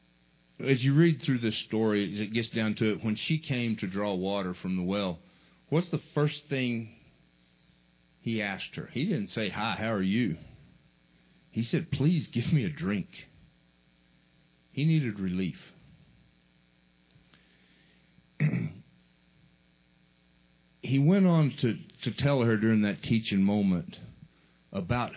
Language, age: English, 50-69